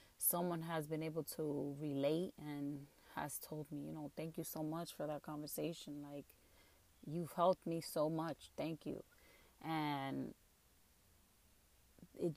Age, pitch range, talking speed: 30-49, 140-165 Hz, 140 wpm